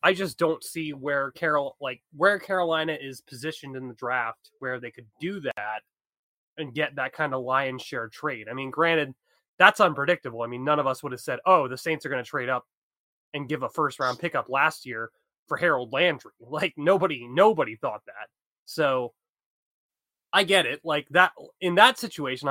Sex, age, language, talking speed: male, 20-39, English, 190 wpm